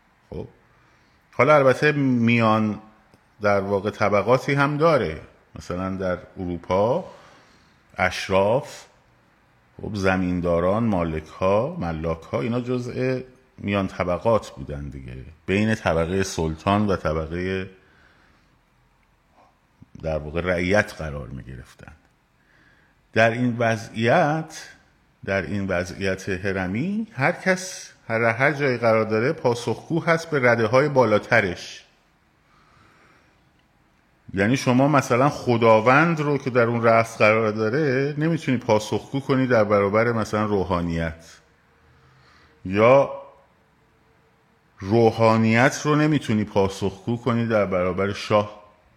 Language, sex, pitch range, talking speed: Persian, male, 90-120 Hz, 95 wpm